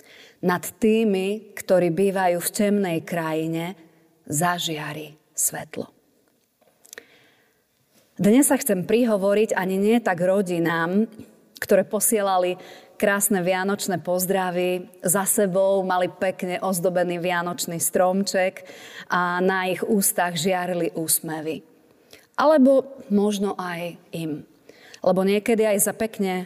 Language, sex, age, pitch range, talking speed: Slovak, female, 30-49, 170-200 Hz, 100 wpm